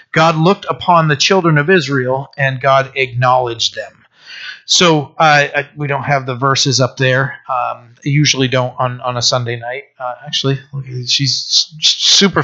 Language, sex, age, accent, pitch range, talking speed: English, male, 40-59, American, 130-155 Hz, 165 wpm